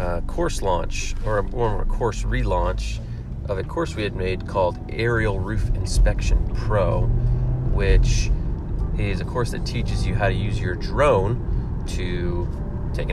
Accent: American